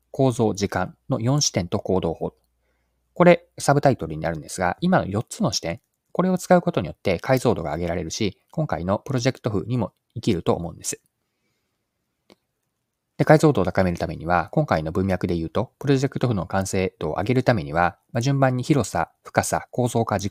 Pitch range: 90-130 Hz